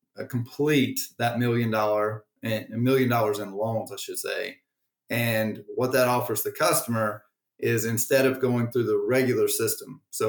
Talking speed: 165 wpm